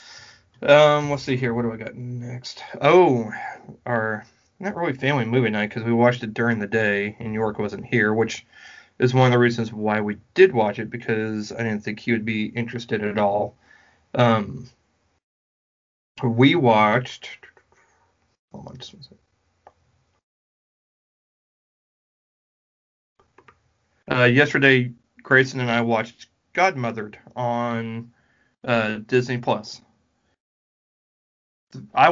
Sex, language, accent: male, English, American